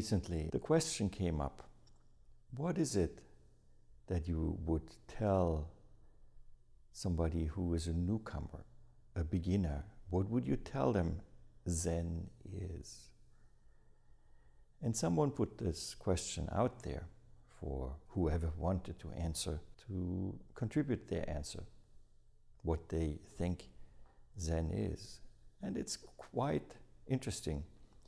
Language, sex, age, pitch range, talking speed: English, male, 60-79, 85-105 Hz, 110 wpm